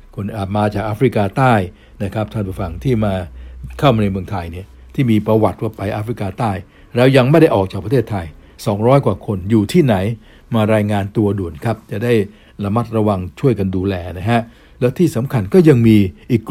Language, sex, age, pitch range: Thai, male, 60-79, 100-120 Hz